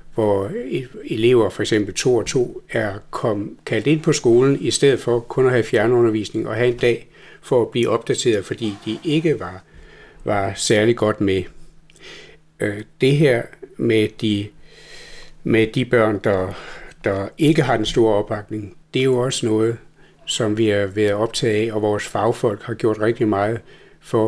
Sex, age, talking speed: male, 60-79, 170 wpm